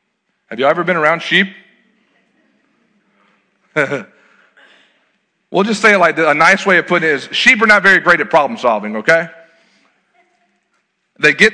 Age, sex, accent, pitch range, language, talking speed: 40-59, male, American, 145-195 Hz, English, 150 wpm